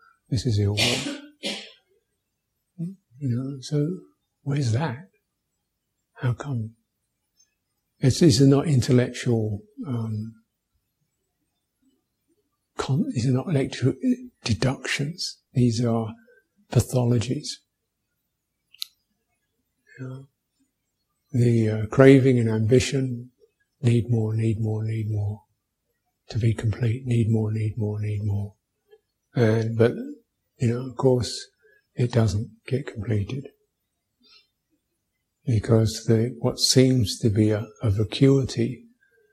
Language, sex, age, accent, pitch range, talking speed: English, male, 60-79, British, 110-140 Hz, 100 wpm